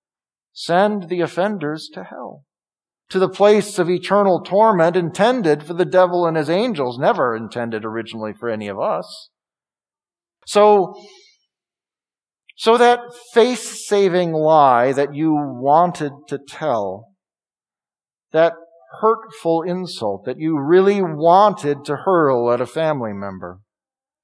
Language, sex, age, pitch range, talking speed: English, male, 50-69, 140-195 Hz, 120 wpm